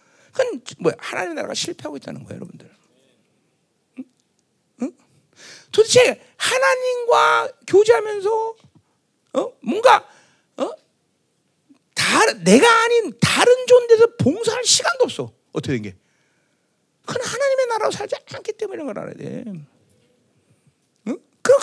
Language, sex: Korean, male